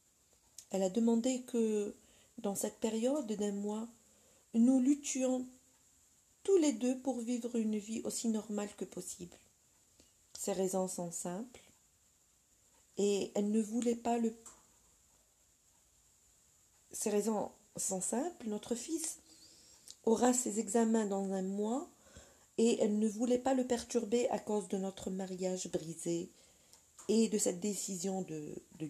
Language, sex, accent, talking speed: French, female, French, 130 wpm